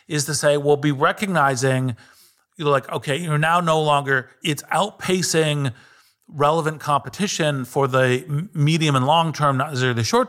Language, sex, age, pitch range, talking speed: English, male, 40-59, 125-155 Hz, 165 wpm